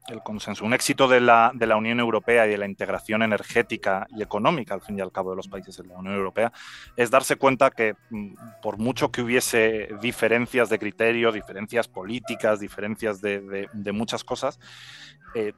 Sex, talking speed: male, 190 wpm